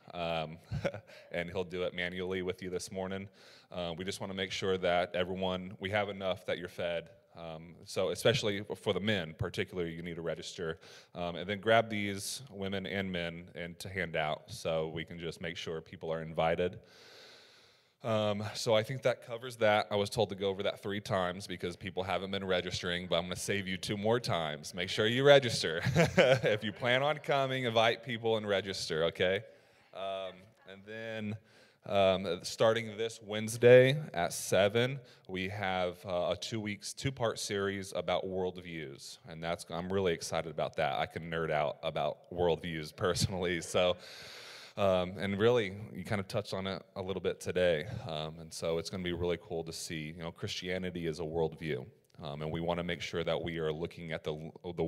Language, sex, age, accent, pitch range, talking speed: English, male, 30-49, American, 85-105 Hz, 195 wpm